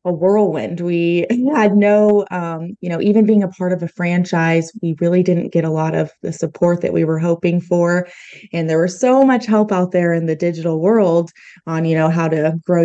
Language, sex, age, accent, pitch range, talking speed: English, female, 20-39, American, 165-195 Hz, 220 wpm